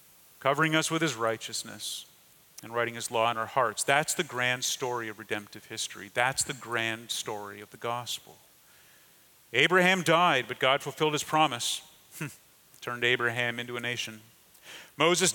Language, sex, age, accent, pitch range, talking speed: English, male, 40-59, American, 115-150 Hz, 155 wpm